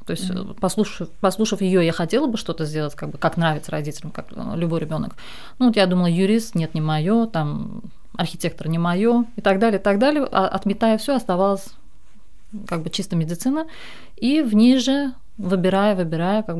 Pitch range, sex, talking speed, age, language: 165-205 Hz, female, 175 wpm, 30-49, Russian